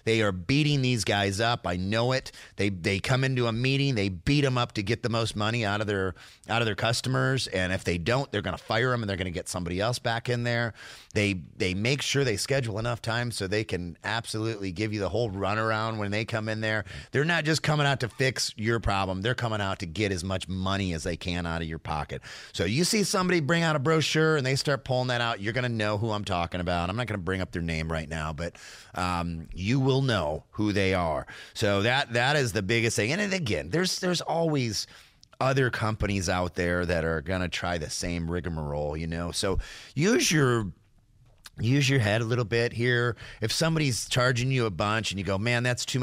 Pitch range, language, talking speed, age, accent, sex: 95-125 Hz, English, 240 wpm, 30-49, American, male